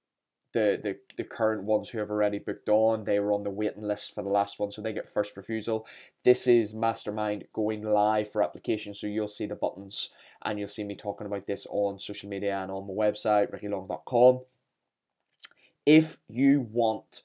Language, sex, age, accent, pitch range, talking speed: English, male, 10-29, British, 105-115 Hz, 190 wpm